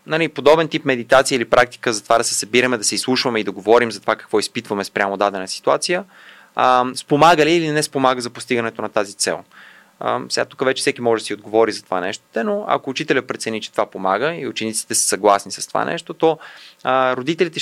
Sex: male